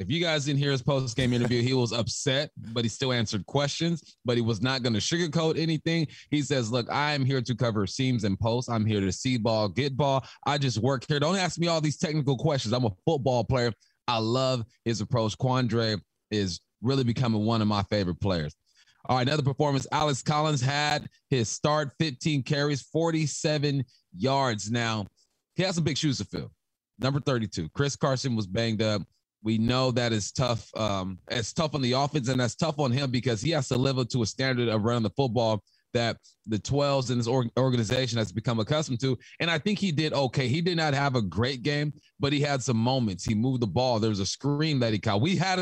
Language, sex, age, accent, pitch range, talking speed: English, male, 30-49, American, 115-150 Hz, 220 wpm